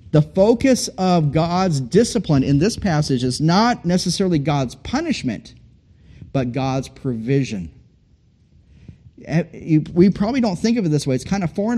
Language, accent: English, American